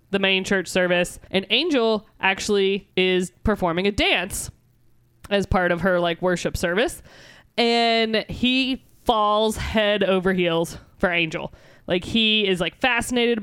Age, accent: 20-39, American